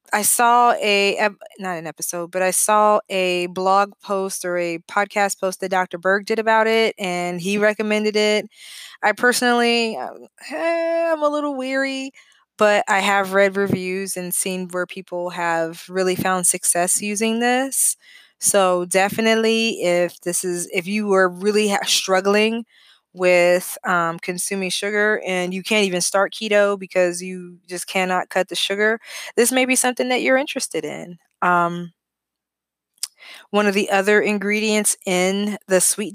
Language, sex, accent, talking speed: English, female, American, 150 wpm